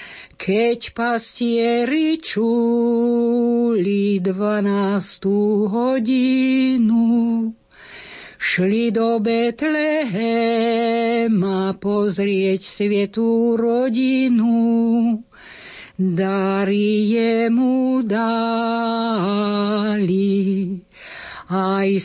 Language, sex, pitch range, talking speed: Slovak, female, 205-255 Hz, 40 wpm